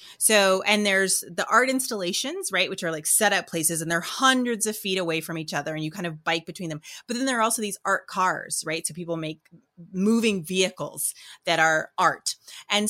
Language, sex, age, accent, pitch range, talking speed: English, female, 30-49, American, 170-220 Hz, 220 wpm